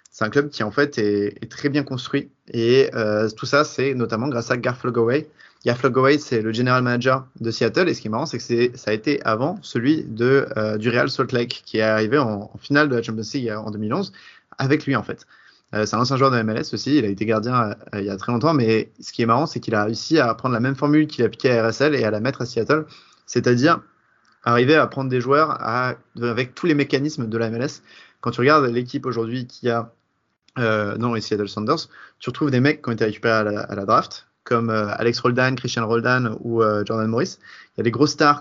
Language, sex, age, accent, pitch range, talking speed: French, male, 30-49, French, 110-135 Hz, 255 wpm